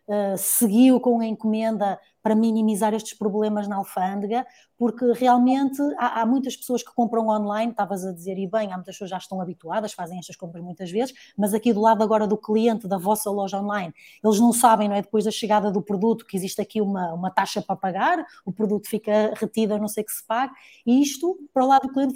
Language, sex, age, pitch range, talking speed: Portuguese, female, 20-39, 195-235 Hz, 220 wpm